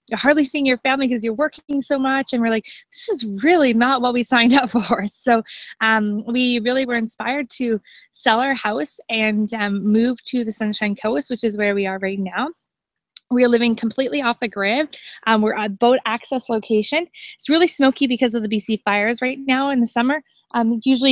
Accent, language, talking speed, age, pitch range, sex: American, English, 210 wpm, 20-39, 210-250 Hz, female